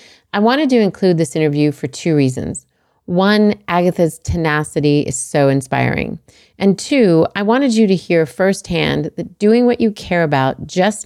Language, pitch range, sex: English, 150-190 Hz, female